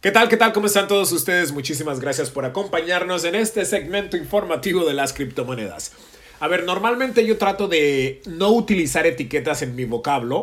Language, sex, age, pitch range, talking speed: English, male, 30-49, 145-200 Hz, 180 wpm